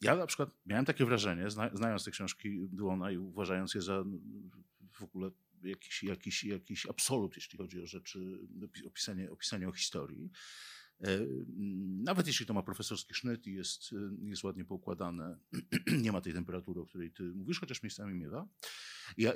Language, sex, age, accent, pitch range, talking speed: Polish, male, 50-69, native, 100-145 Hz, 155 wpm